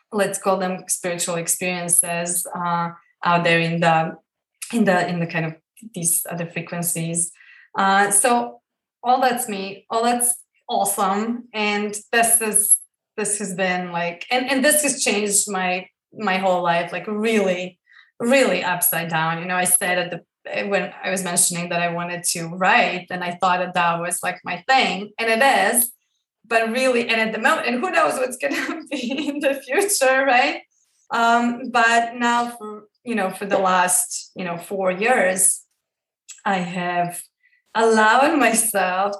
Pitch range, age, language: 180-230 Hz, 20-39, English